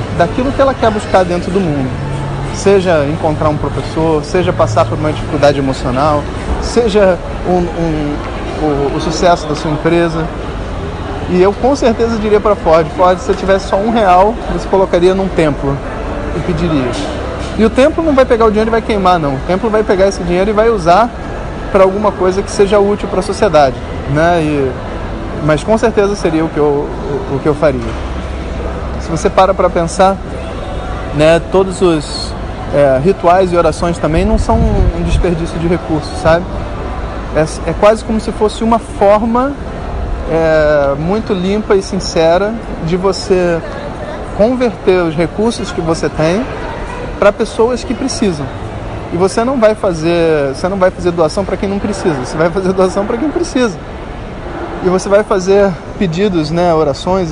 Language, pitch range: Portuguese, 145-205 Hz